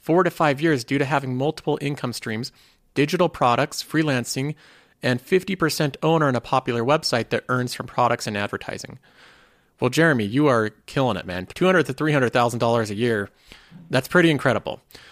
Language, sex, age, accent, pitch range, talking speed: English, male, 30-49, American, 120-160 Hz, 160 wpm